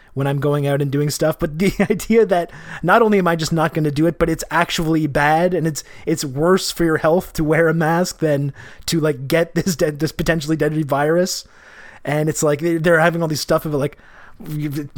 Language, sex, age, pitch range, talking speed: English, male, 20-39, 140-165 Hz, 230 wpm